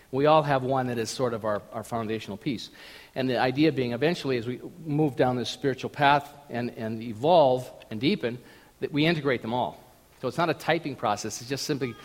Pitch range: 125-165 Hz